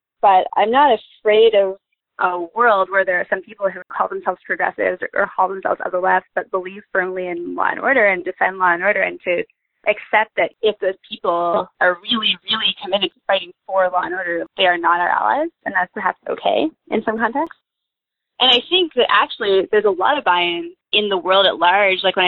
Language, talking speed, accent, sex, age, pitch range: English, 220 wpm, American, female, 20-39, 185-225 Hz